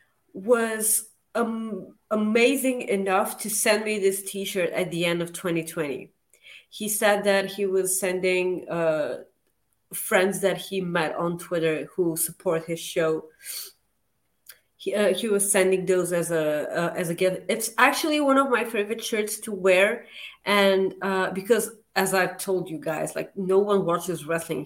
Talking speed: 160 wpm